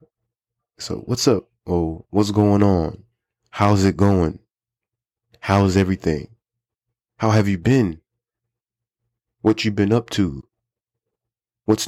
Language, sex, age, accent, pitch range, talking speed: English, male, 20-39, American, 90-115 Hz, 110 wpm